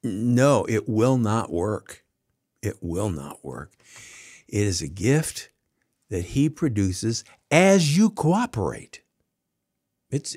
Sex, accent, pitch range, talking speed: male, American, 115-150 Hz, 115 wpm